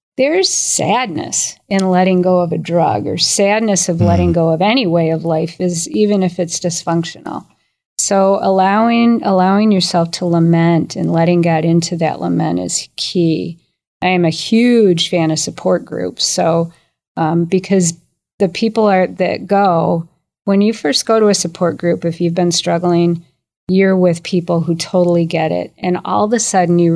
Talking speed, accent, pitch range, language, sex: 175 wpm, American, 165-185 Hz, English, female